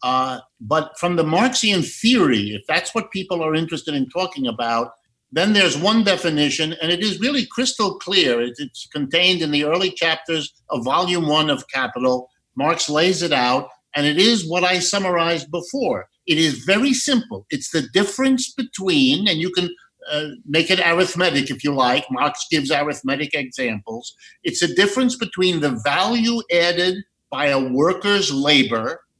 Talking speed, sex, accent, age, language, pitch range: 165 wpm, male, American, 50-69, English, 145-205 Hz